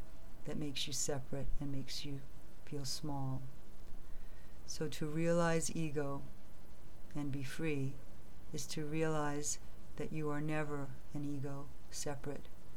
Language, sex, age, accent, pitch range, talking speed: English, female, 50-69, American, 130-150 Hz, 120 wpm